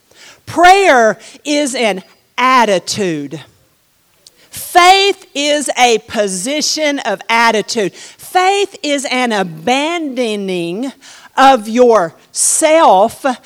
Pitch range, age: 215-320 Hz, 50-69